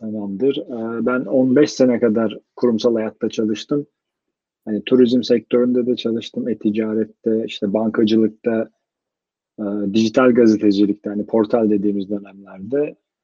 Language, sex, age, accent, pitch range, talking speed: Turkish, male, 40-59, native, 110-140 Hz, 100 wpm